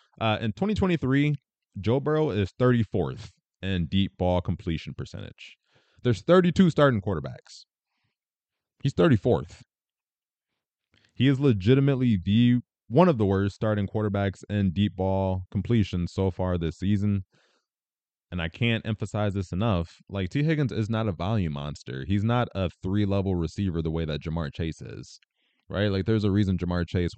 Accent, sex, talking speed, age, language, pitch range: American, male, 150 wpm, 20-39, English, 85-105 Hz